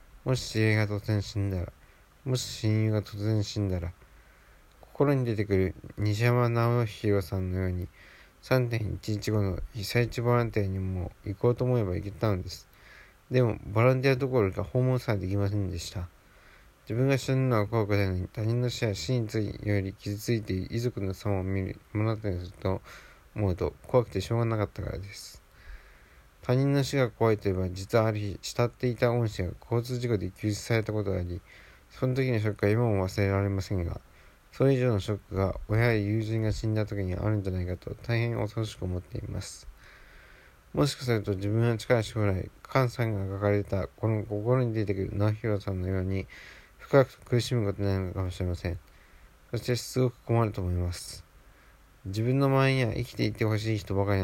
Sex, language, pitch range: male, Japanese, 95-120 Hz